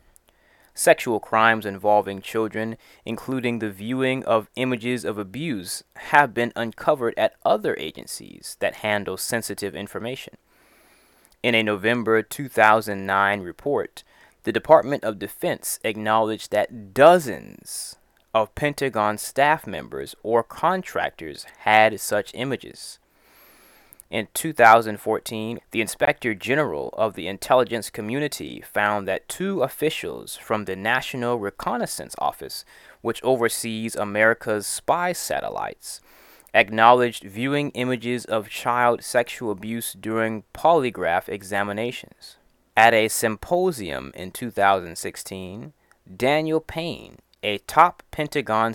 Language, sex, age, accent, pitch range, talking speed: English, male, 20-39, American, 105-125 Hz, 105 wpm